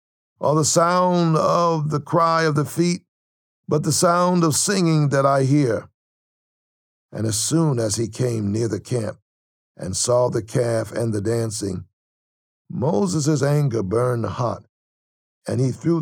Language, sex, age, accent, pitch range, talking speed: English, male, 60-79, American, 110-160 Hz, 150 wpm